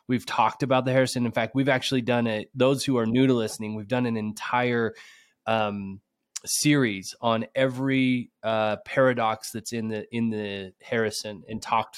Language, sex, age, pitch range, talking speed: English, male, 20-39, 110-135 Hz, 175 wpm